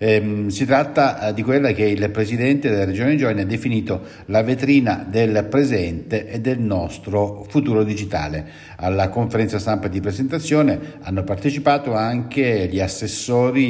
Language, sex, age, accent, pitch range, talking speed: Italian, male, 50-69, native, 95-130 Hz, 135 wpm